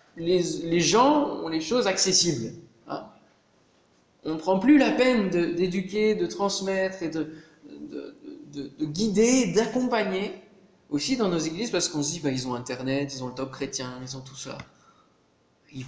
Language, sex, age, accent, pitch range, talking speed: French, male, 20-39, French, 145-205 Hz, 180 wpm